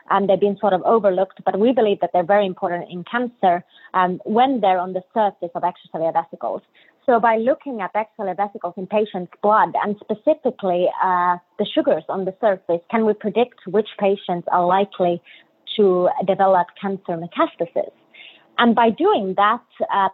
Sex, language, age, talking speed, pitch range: female, English, 20-39, 170 wpm, 185-220 Hz